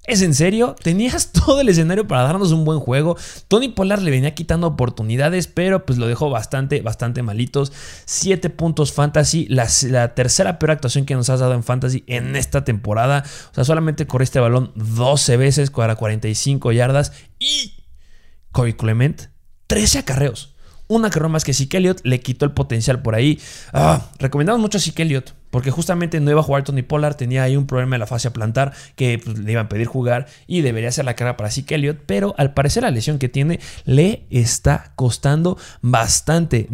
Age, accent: 20-39, Mexican